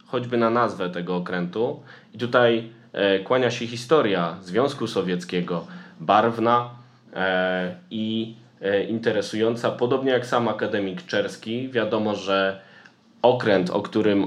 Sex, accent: male, native